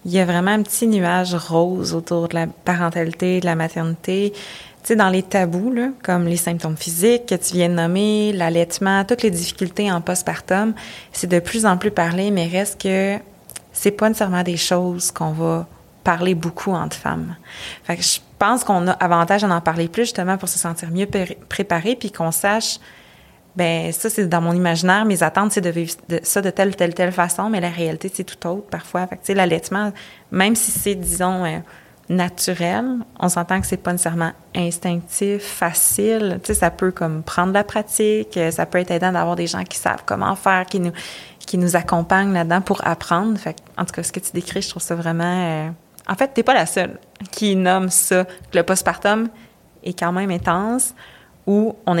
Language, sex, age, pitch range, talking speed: French, female, 20-39, 170-200 Hz, 205 wpm